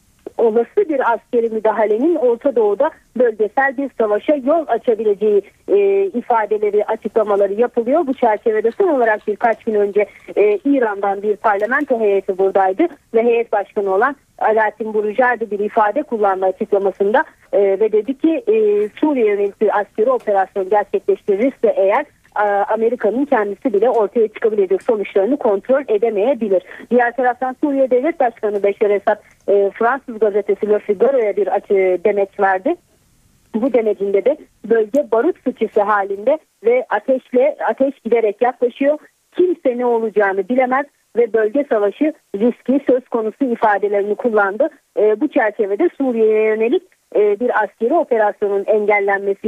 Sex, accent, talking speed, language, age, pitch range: female, native, 125 wpm, Turkish, 40-59, 205-280 Hz